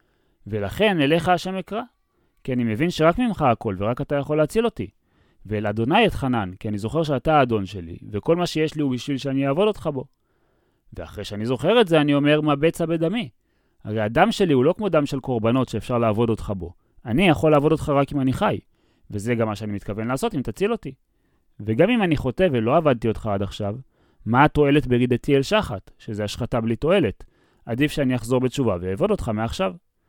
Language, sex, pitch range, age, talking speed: Hebrew, male, 110-160 Hz, 30-49, 180 wpm